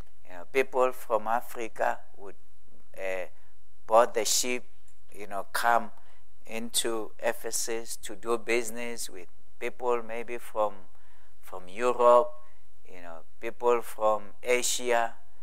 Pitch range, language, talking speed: 95-120 Hz, English, 115 wpm